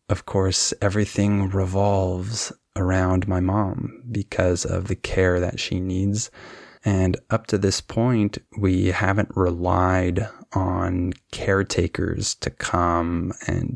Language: Spanish